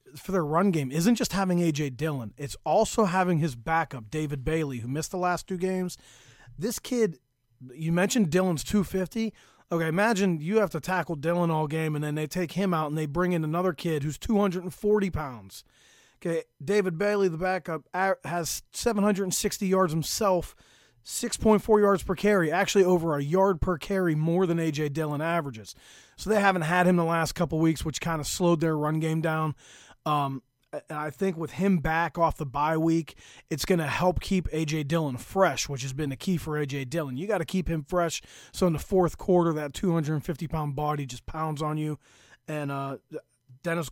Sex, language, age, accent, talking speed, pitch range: male, English, 30-49, American, 195 wpm, 150-185 Hz